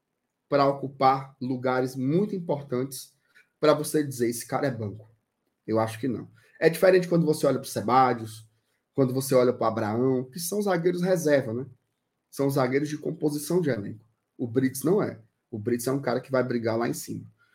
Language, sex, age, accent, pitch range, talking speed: Portuguese, male, 20-39, Brazilian, 125-175 Hz, 190 wpm